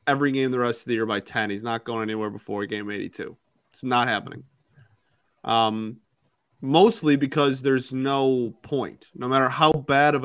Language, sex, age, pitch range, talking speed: English, male, 20-39, 115-140 Hz, 175 wpm